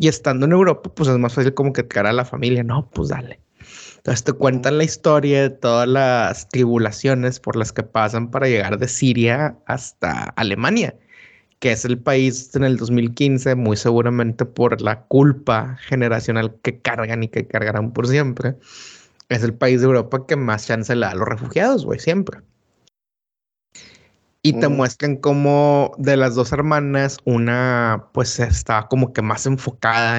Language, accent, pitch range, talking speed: Spanish, Mexican, 115-140 Hz, 170 wpm